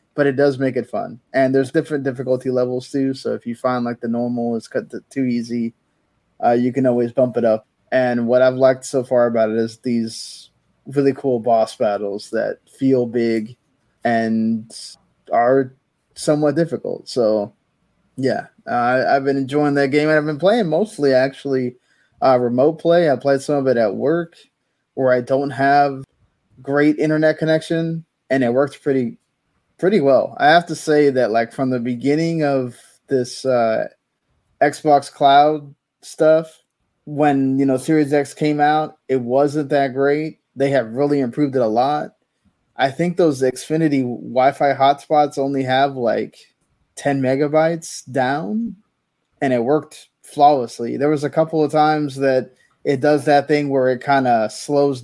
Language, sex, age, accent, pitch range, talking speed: English, male, 20-39, American, 125-150 Hz, 170 wpm